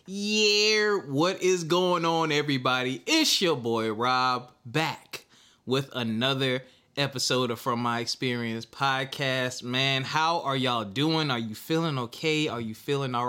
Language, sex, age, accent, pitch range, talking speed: English, male, 20-39, American, 120-160 Hz, 145 wpm